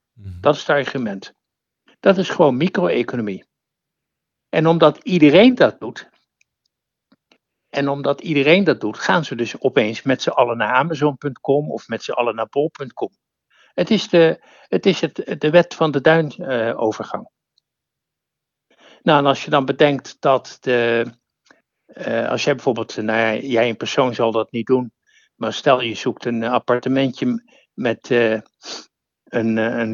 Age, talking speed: 60-79, 140 wpm